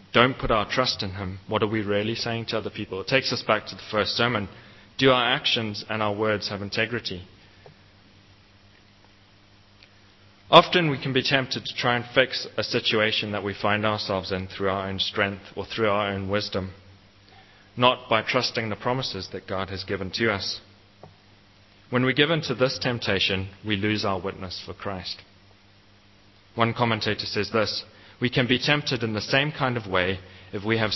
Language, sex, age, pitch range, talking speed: English, male, 30-49, 100-115 Hz, 185 wpm